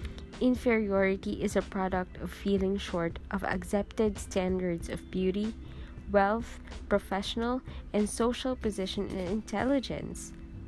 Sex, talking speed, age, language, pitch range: female, 105 wpm, 20-39, English, 180-240 Hz